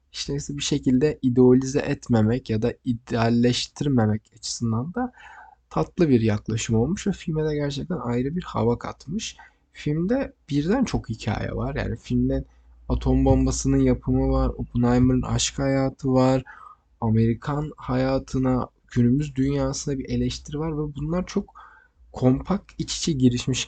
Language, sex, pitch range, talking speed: Turkish, male, 115-130 Hz, 125 wpm